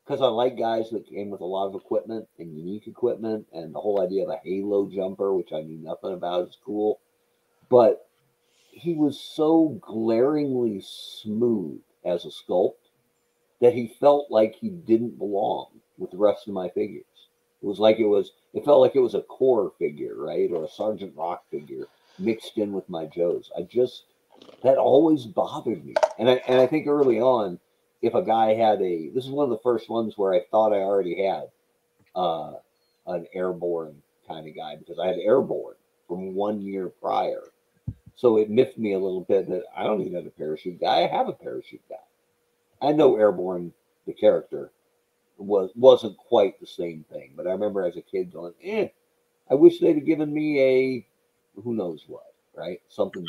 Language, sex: English, male